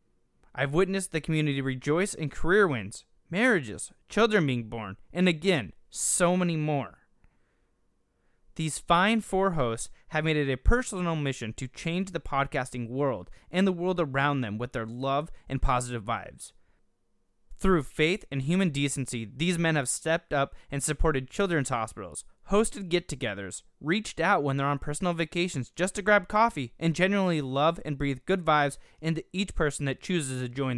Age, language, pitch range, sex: 20-39, English, 130-185 Hz, male